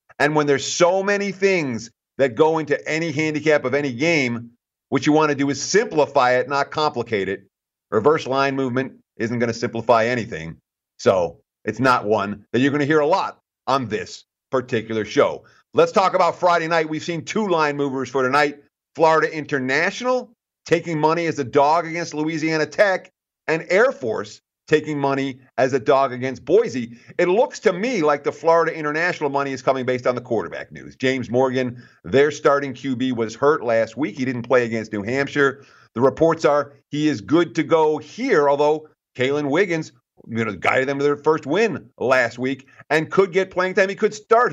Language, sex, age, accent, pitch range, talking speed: English, male, 50-69, American, 125-155 Hz, 190 wpm